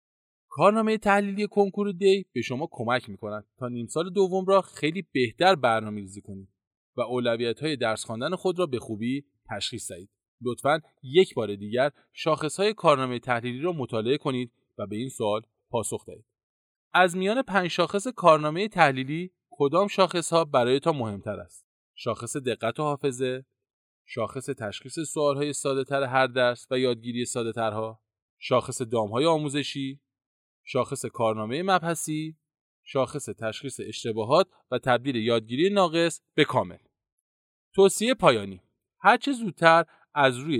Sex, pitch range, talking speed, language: male, 115-165 Hz, 135 wpm, Persian